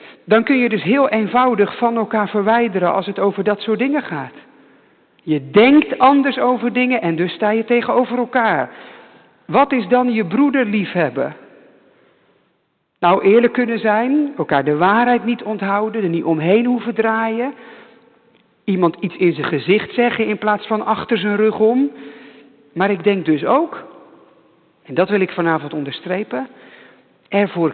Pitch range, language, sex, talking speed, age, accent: 170-235 Hz, English, male, 155 wpm, 50-69, Dutch